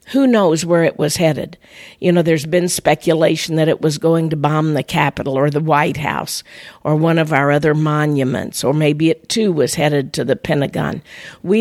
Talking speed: 200 wpm